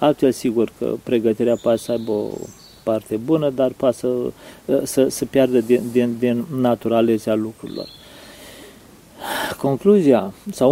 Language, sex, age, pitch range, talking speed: Romanian, male, 40-59, 115-135 Hz, 125 wpm